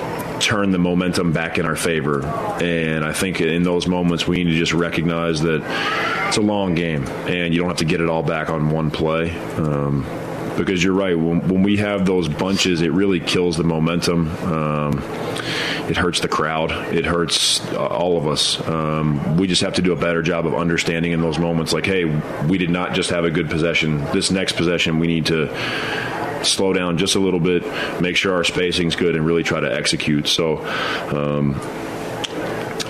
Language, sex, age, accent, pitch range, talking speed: English, male, 30-49, American, 80-90 Hz, 200 wpm